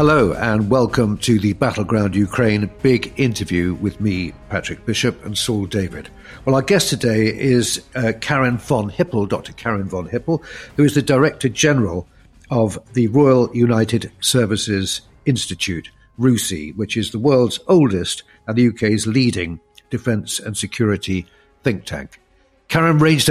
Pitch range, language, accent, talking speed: 100-130 Hz, English, British, 145 wpm